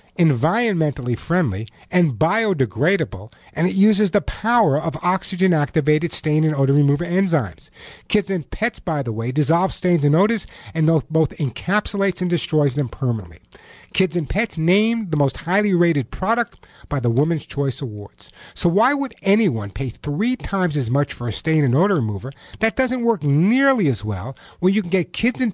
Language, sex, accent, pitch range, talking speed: English, male, American, 145-215 Hz, 175 wpm